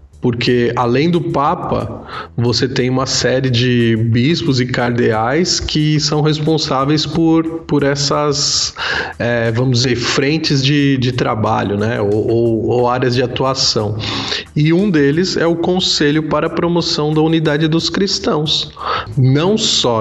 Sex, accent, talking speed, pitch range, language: male, Brazilian, 140 wpm, 115-150 Hz, Portuguese